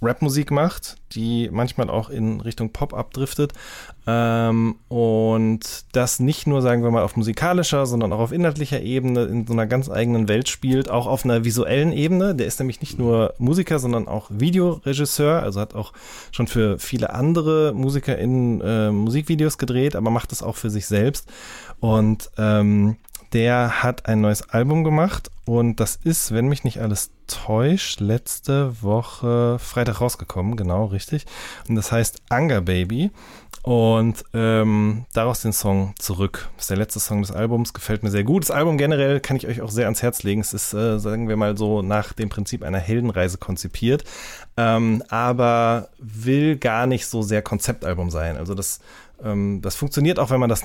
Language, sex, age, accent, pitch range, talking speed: German, male, 20-39, German, 105-130 Hz, 175 wpm